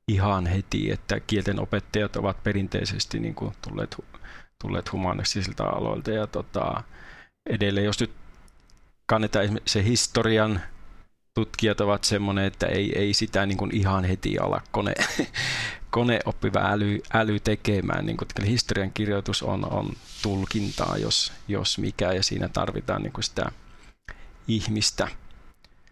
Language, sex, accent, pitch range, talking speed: Finnish, male, native, 100-120 Hz, 125 wpm